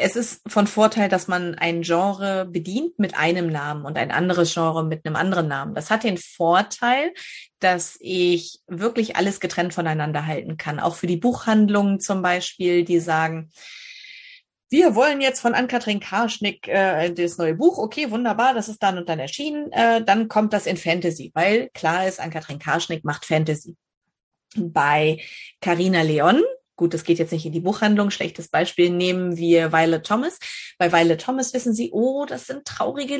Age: 30-49